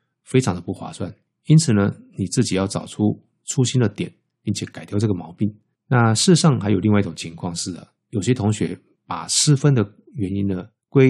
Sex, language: male, Chinese